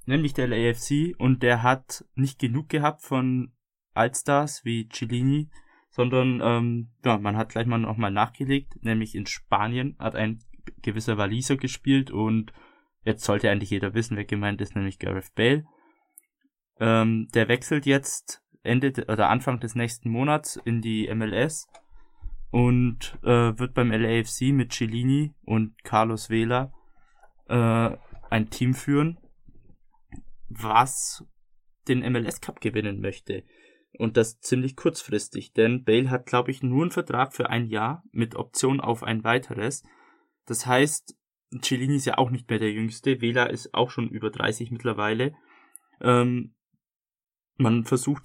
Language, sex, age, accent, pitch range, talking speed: German, male, 20-39, German, 115-135 Hz, 145 wpm